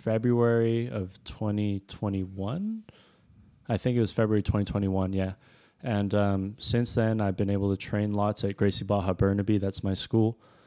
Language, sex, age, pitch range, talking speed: English, male, 20-39, 100-110 Hz, 150 wpm